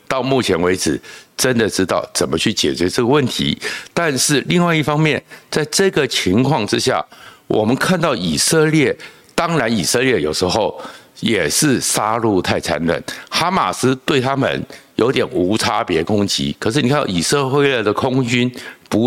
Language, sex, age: Chinese, male, 60-79